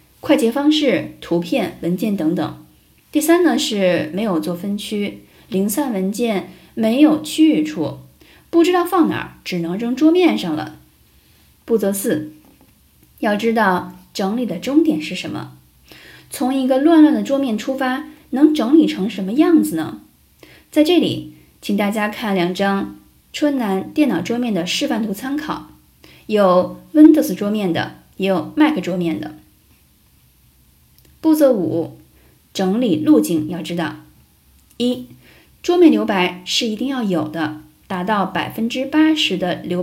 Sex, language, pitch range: female, Chinese, 175-285 Hz